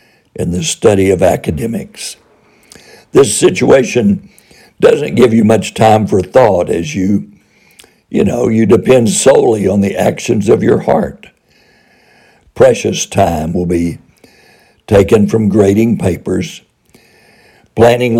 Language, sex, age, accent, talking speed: Finnish, male, 60-79, American, 120 wpm